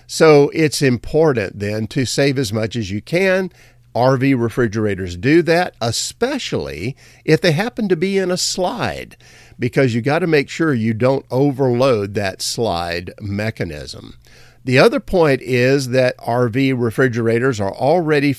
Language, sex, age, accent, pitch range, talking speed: English, male, 50-69, American, 120-155 Hz, 145 wpm